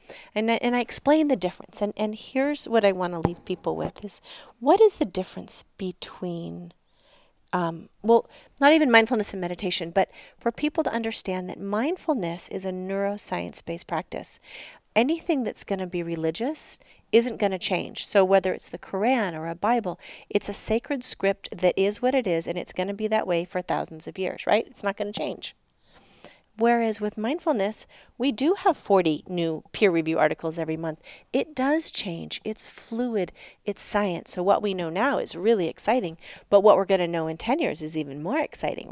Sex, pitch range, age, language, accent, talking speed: female, 180-230 Hz, 40-59, English, American, 195 wpm